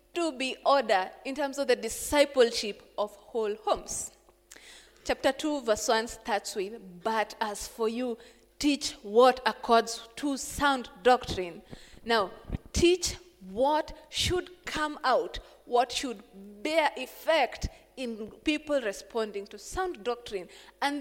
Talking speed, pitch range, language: 125 wpm, 220-305 Hz, English